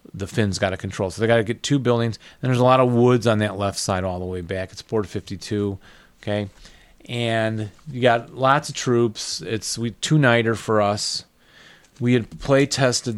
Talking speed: 200 wpm